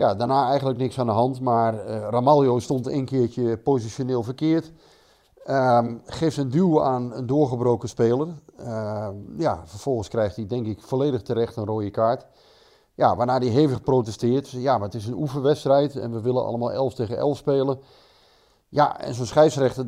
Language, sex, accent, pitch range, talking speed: Dutch, male, Dutch, 115-140 Hz, 175 wpm